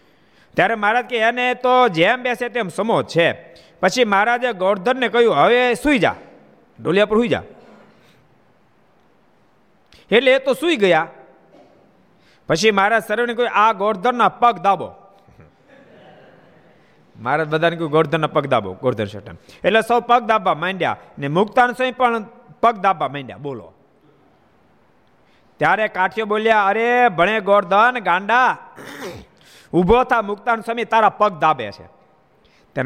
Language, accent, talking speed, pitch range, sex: Gujarati, native, 65 wpm, 130-220 Hz, male